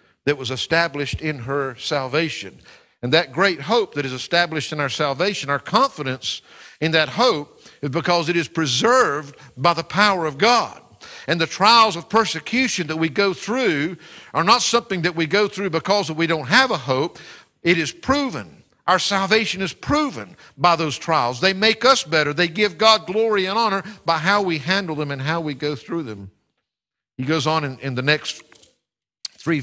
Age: 50-69